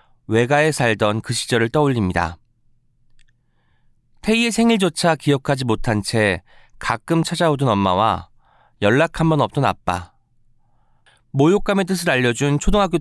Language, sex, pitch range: Korean, male, 110-160 Hz